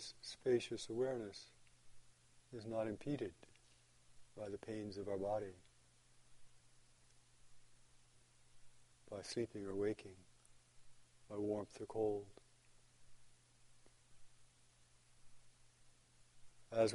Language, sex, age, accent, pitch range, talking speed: English, male, 60-79, American, 80-120 Hz, 70 wpm